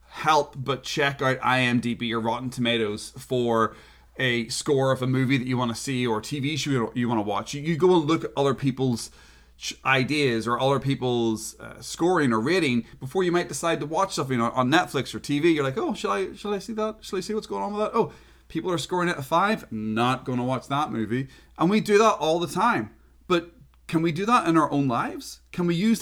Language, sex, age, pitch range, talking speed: English, male, 30-49, 115-165 Hz, 230 wpm